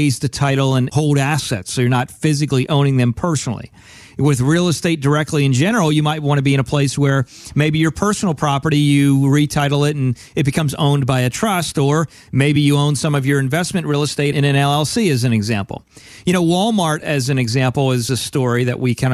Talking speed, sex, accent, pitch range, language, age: 215 wpm, male, American, 135-170 Hz, English, 40-59